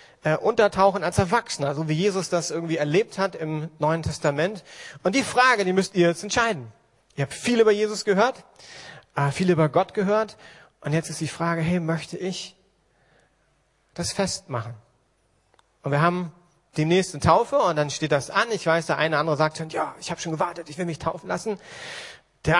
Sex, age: male, 40-59